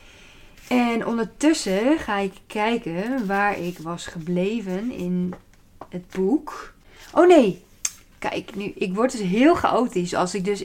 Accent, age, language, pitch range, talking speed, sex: Dutch, 20-39, Dutch, 180-215 Hz, 135 wpm, female